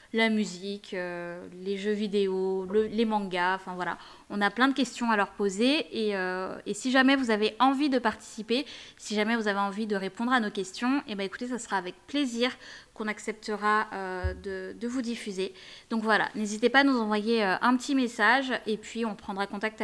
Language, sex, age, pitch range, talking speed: French, female, 20-39, 205-255 Hz, 210 wpm